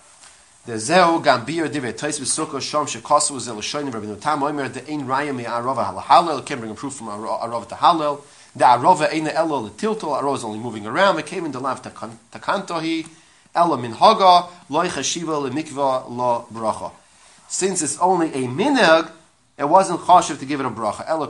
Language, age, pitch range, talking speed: English, 30-49, 115-155 Hz, 185 wpm